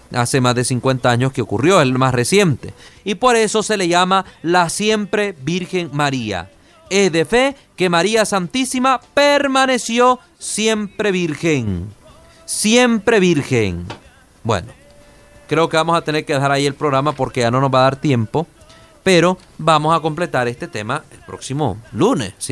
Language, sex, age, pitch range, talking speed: Spanish, male, 30-49, 125-165 Hz, 160 wpm